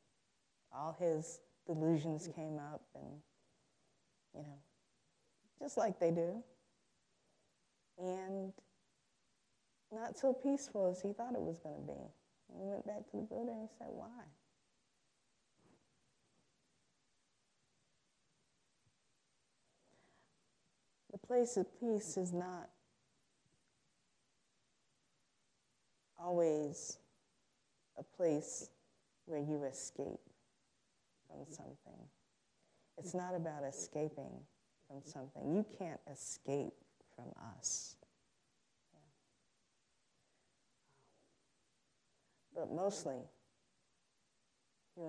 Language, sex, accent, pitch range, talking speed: English, female, American, 140-190 Hz, 80 wpm